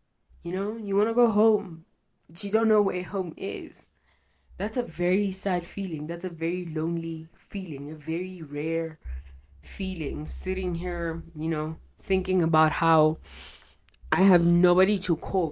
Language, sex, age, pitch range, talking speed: English, female, 20-39, 145-195 Hz, 155 wpm